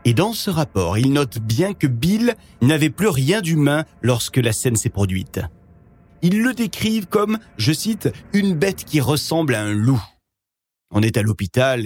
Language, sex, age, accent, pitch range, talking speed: French, male, 40-59, French, 100-150 Hz, 185 wpm